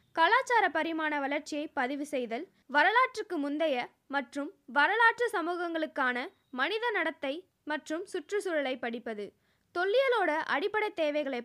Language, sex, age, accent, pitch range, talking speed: Tamil, female, 20-39, native, 285-390 Hz, 95 wpm